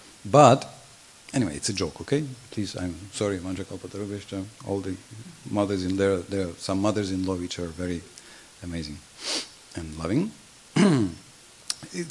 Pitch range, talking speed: 95-115 Hz, 135 wpm